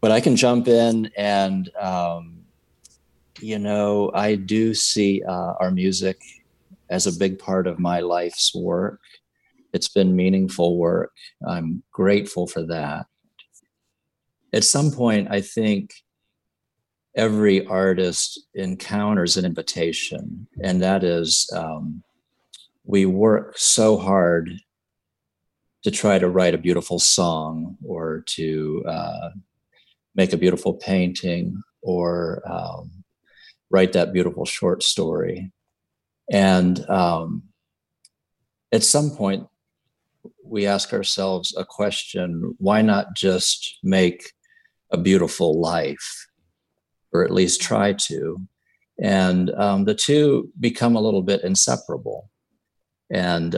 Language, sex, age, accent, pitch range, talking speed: English, male, 50-69, American, 90-105 Hz, 115 wpm